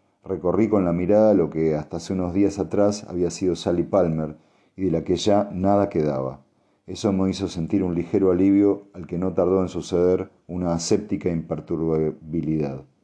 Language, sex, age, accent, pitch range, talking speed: Spanish, male, 40-59, Argentinian, 80-100 Hz, 175 wpm